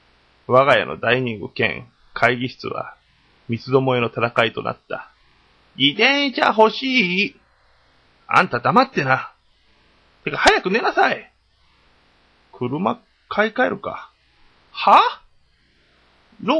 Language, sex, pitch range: Japanese, male, 120-200 Hz